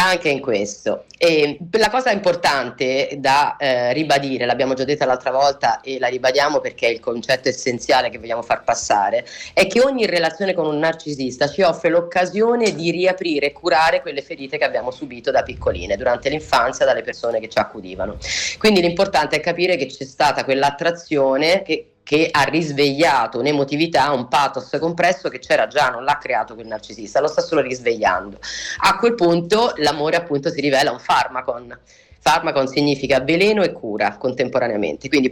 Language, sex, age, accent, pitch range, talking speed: Italian, female, 30-49, native, 135-185 Hz, 170 wpm